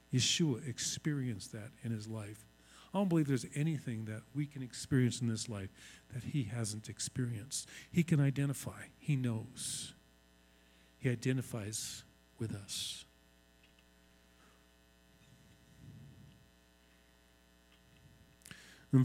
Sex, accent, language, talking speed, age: male, American, English, 100 wpm, 50-69